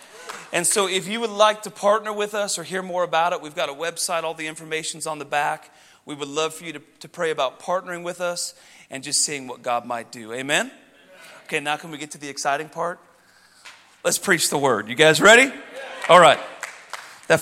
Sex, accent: male, American